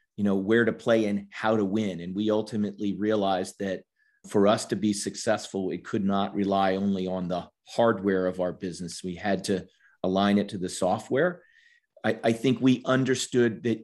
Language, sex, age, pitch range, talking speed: English, male, 40-59, 100-115 Hz, 190 wpm